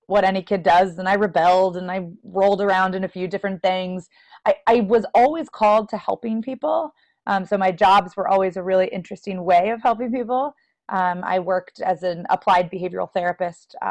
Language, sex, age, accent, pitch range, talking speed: English, female, 30-49, American, 180-205 Hz, 200 wpm